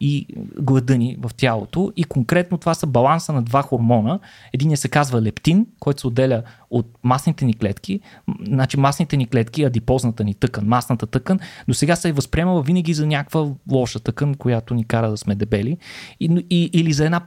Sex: male